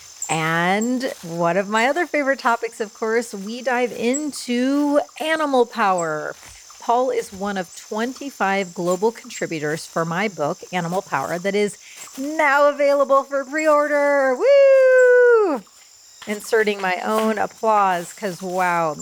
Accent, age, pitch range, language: American, 30-49, 185-245 Hz, English